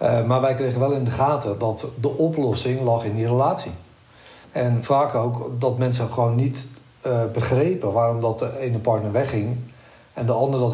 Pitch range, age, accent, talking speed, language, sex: 115-140 Hz, 60-79, Dutch, 185 wpm, Dutch, male